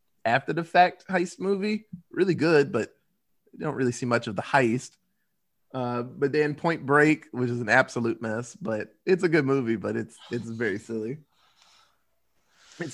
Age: 20-39